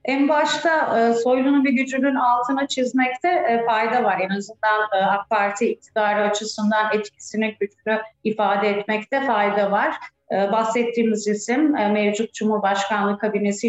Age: 30-49